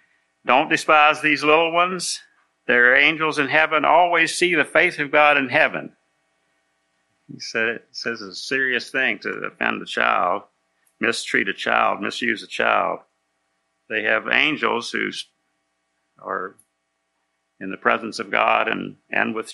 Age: 50-69